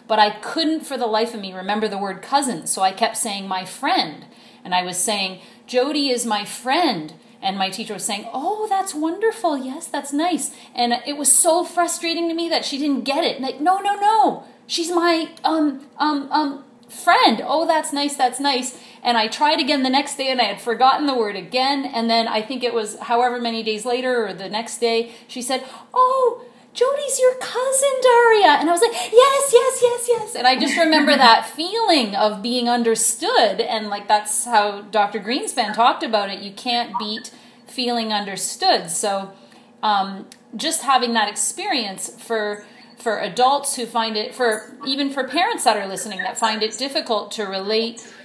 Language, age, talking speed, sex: English, 30-49, 195 wpm, female